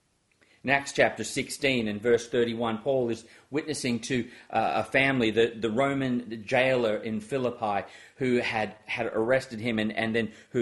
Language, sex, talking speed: English, male, 165 wpm